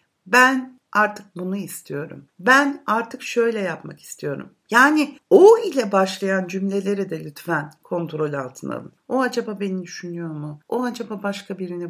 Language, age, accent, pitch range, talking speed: Turkish, 60-79, native, 195-280 Hz, 140 wpm